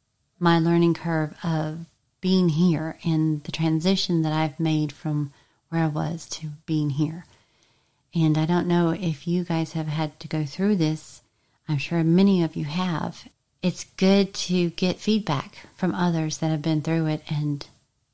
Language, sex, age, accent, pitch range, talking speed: English, female, 40-59, American, 150-175 Hz, 170 wpm